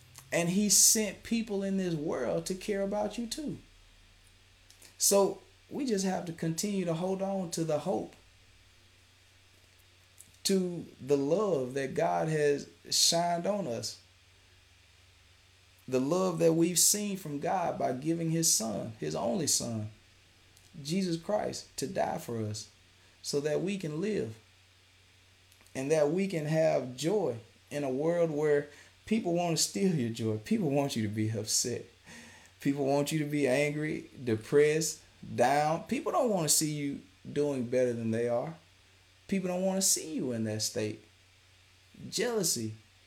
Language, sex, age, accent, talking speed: English, male, 30-49, American, 150 wpm